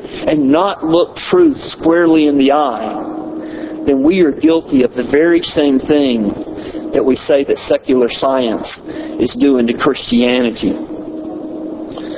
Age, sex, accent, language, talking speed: 50-69, male, American, English, 135 wpm